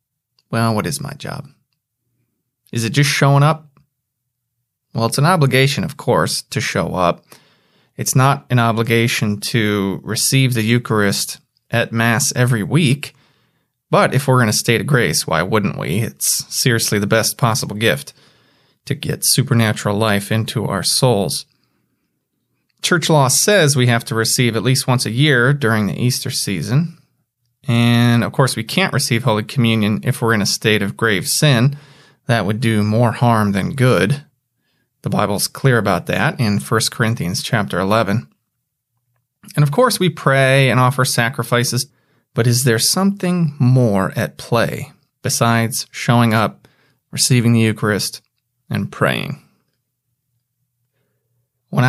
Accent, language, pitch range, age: American, English, 115-140 Hz, 20-39